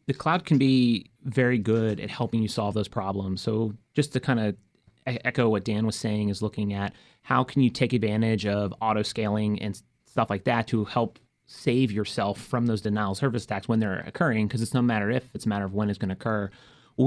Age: 30-49